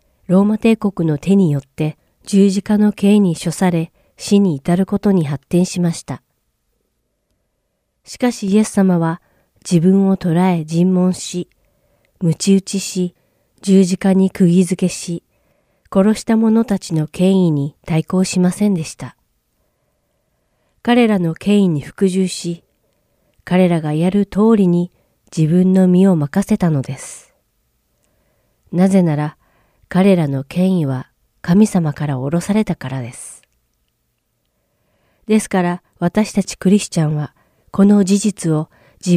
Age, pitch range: 40-59, 155-195 Hz